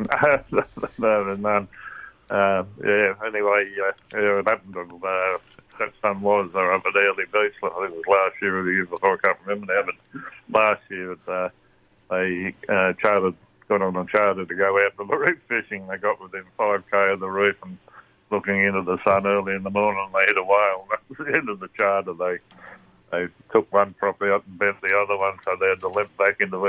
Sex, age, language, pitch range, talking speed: male, 60-79, English, 95-105 Hz, 220 wpm